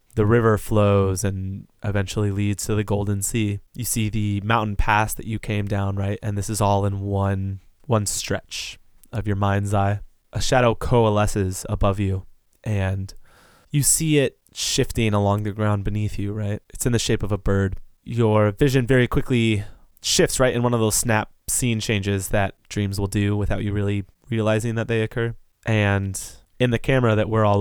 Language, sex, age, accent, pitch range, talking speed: English, male, 20-39, American, 100-110 Hz, 185 wpm